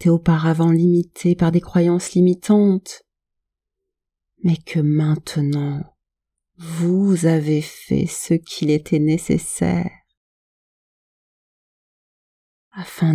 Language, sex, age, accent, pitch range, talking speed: French, female, 40-59, French, 130-175 Hz, 80 wpm